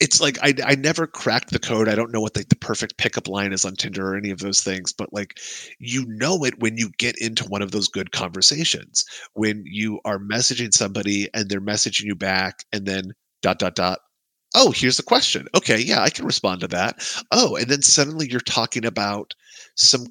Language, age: English, 30-49